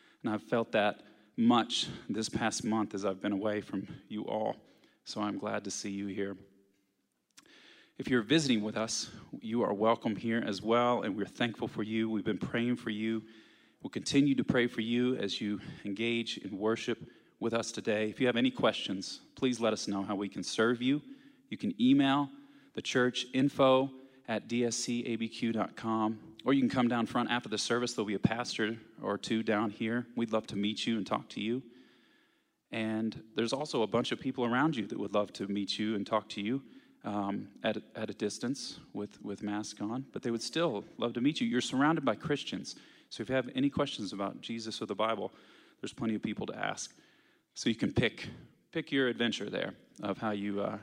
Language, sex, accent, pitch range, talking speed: English, male, American, 105-125 Hz, 205 wpm